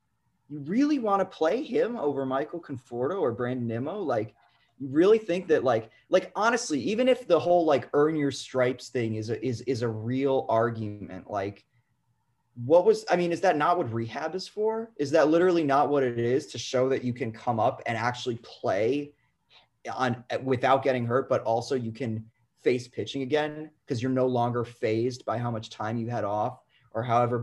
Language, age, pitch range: English, 20-39, 110-140 Hz